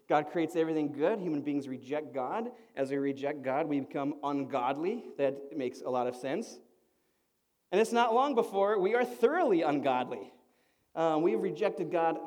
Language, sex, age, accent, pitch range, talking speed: English, male, 30-49, American, 140-205 Hz, 165 wpm